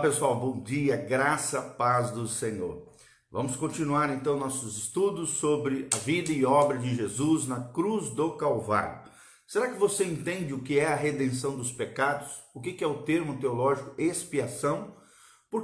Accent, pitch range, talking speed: Brazilian, 135-175 Hz, 170 wpm